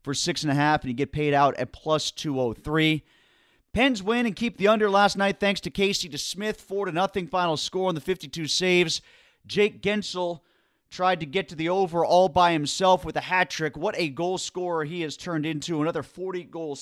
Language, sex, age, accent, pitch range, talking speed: English, male, 30-49, American, 150-185 Hz, 215 wpm